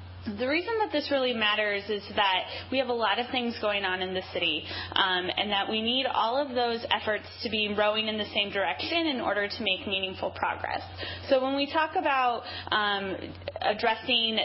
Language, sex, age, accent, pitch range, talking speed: English, female, 20-39, American, 195-245 Hz, 200 wpm